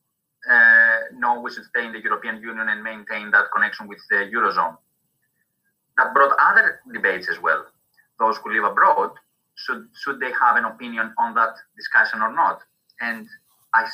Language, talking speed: English, 170 wpm